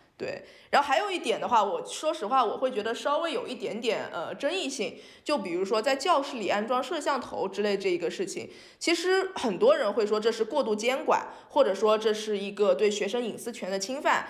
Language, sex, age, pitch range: Chinese, female, 20-39, 200-275 Hz